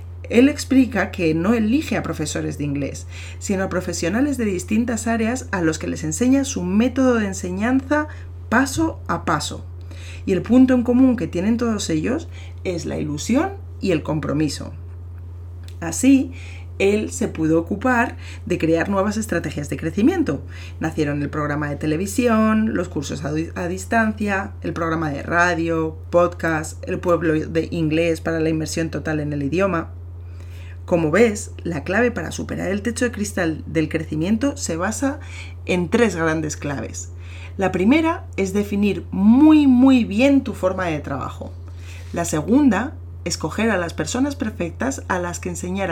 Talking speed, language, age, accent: 155 wpm, Spanish, 30-49, Spanish